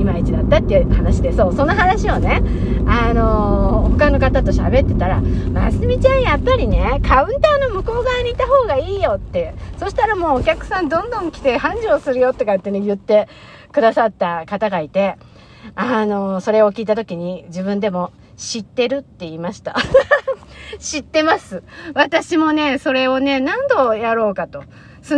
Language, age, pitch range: Japanese, 50-69, 185-300 Hz